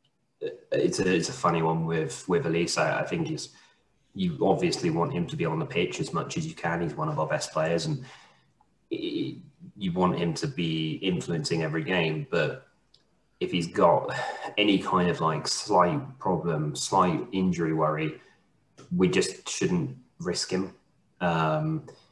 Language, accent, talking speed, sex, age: English, British, 170 wpm, male, 20-39